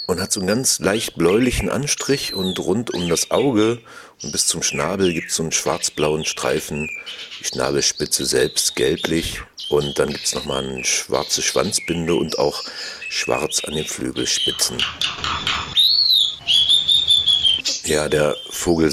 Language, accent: German, German